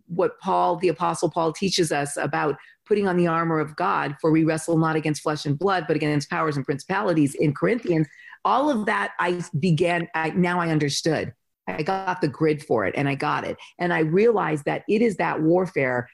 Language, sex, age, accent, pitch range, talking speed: English, female, 40-59, American, 155-190 Hz, 205 wpm